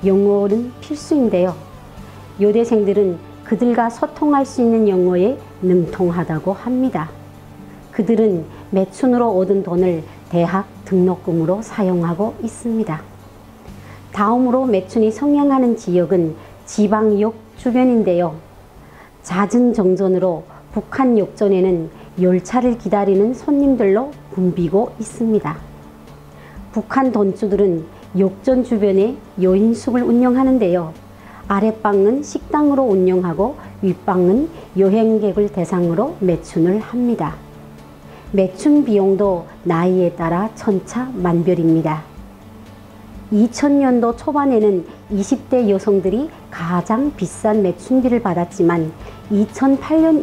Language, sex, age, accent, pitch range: Korean, male, 40-59, native, 175-230 Hz